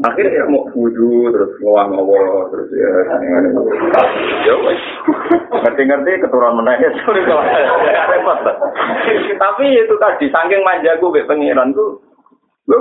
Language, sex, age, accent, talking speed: Indonesian, male, 30-49, native, 85 wpm